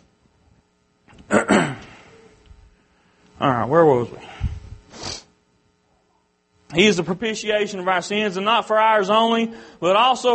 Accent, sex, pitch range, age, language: American, male, 135-225 Hz, 30-49, English